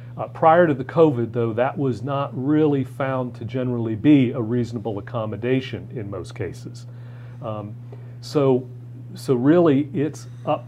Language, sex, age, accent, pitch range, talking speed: English, male, 40-59, American, 120-135 Hz, 145 wpm